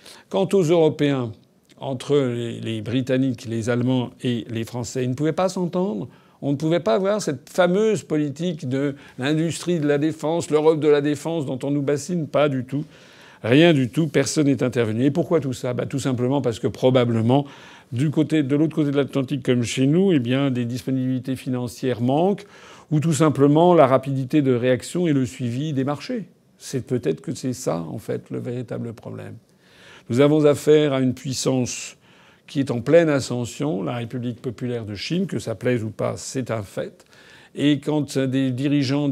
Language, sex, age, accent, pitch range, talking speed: French, male, 50-69, French, 125-150 Hz, 185 wpm